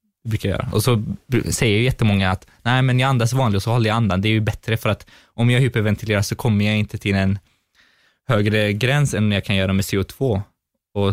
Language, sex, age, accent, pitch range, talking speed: Swedish, male, 20-39, native, 105-125 Hz, 225 wpm